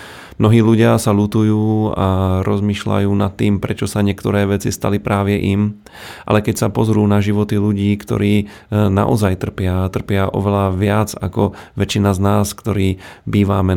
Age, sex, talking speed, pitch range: 30-49, male, 150 wpm, 100-105 Hz